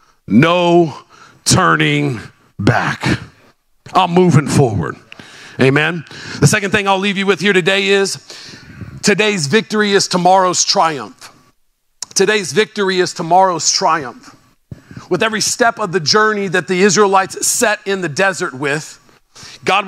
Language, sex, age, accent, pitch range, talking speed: English, male, 40-59, American, 170-210 Hz, 125 wpm